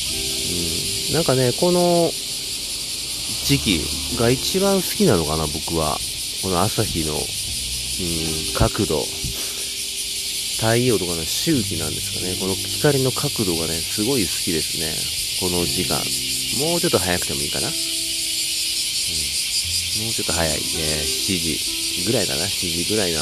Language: Japanese